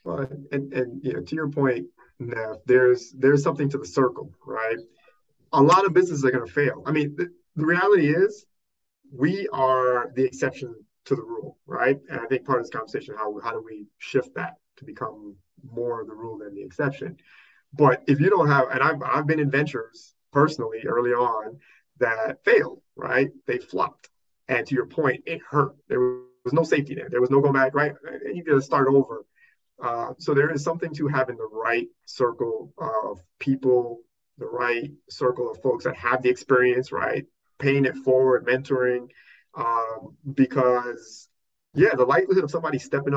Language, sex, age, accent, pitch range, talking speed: English, male, 30-49, American, 125-155 Hz, 190 wpm